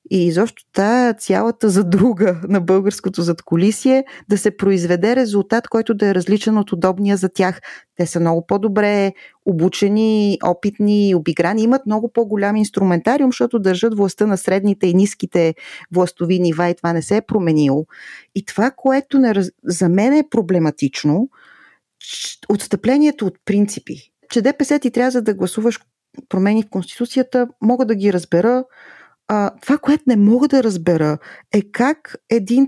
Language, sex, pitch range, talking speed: Bulgarian, female, 195-255 Hz, 145 wpm